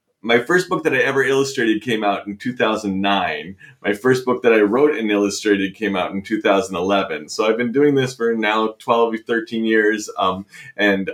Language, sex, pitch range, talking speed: English, male, 100-125 Hz, 195 wpm